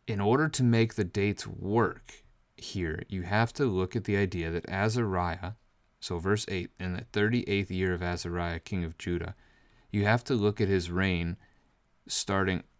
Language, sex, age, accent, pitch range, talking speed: English, male, 30-49, American, 85-100 Hz, 175 wpm